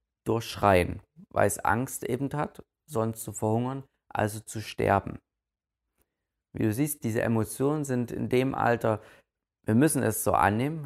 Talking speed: 145 wpm